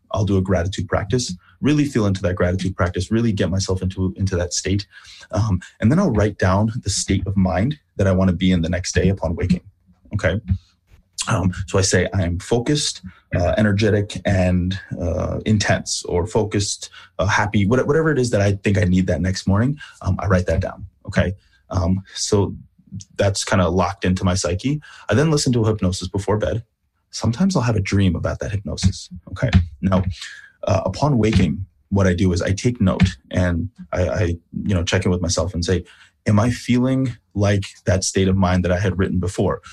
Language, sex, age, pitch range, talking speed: English, male, 20-39, 90-110 Hz, 200 wpm